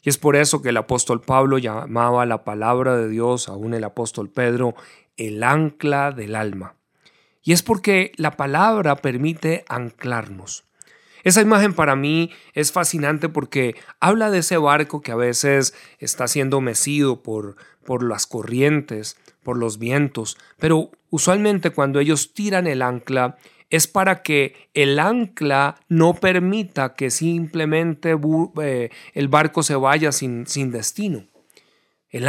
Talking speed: 145 wpm